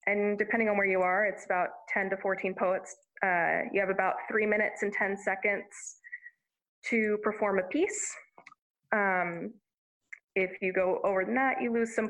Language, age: English, 20-39